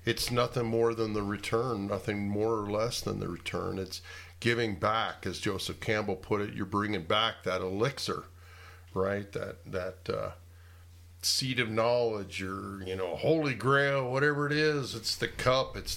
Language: English